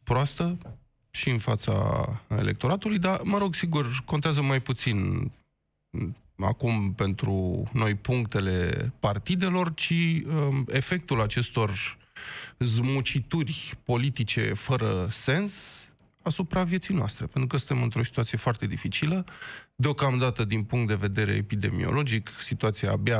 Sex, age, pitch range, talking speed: male, 20-39, 110-150 Hz, 105 wpm